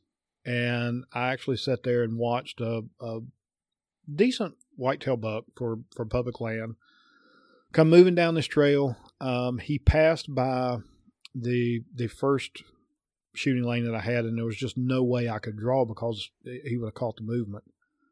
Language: English